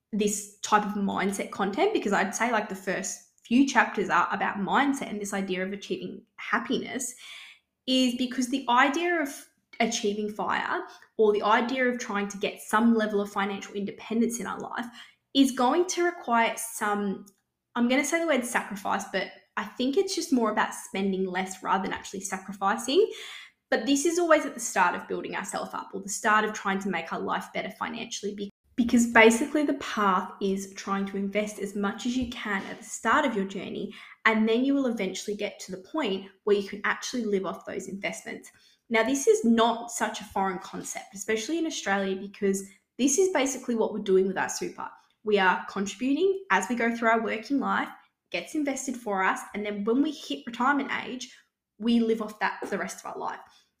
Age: 10-29